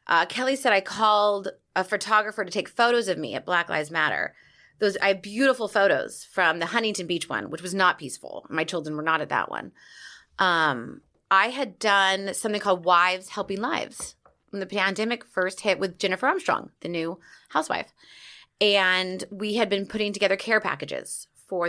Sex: female